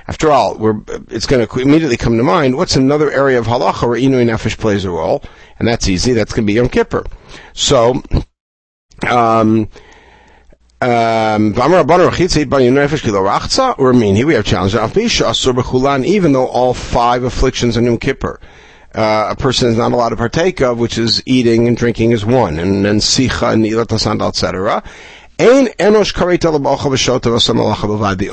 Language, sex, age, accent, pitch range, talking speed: English, male, 50-69, American, 110-145 Hz, 150 wpm